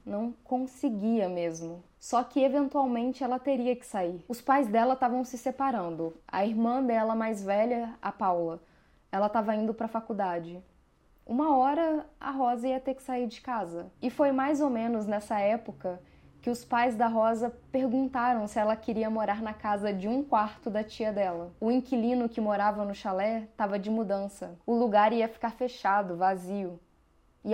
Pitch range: 185-240 Hz